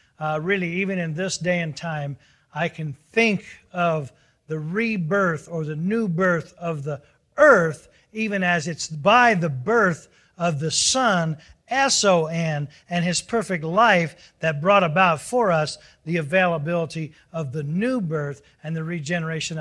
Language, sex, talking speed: English, male, 150 wpm